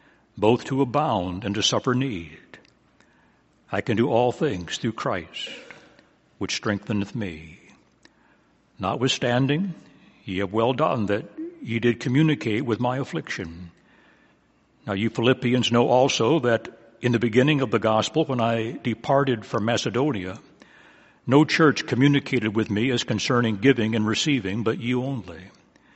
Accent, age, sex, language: American, 60-79, male, English